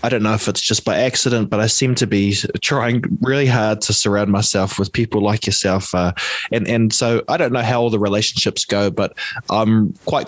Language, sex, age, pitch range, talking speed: English, male, 20-39, 100-120 Hz, 220 wpm